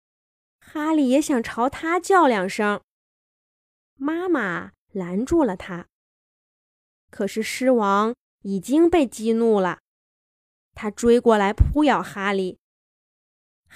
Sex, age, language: female, 20-39, Chinese